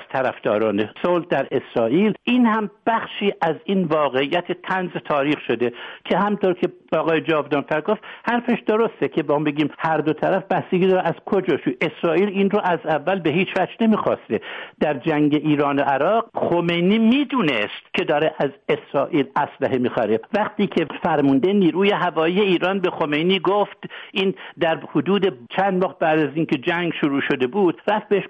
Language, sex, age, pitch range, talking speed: English, male, 60-79, 145-195 Hz, 160 wpm